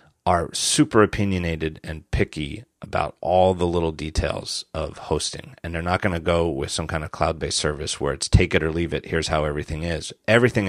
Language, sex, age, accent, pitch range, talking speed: English, male, 30-49, American, 80-105 Hz, 210 wpm